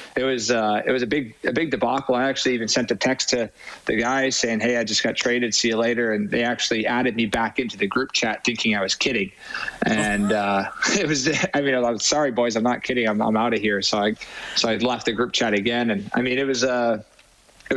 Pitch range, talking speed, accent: 110-125 Hz, 255 wpm, American